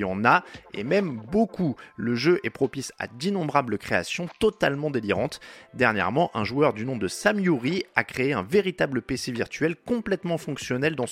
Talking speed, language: 160 wpm, French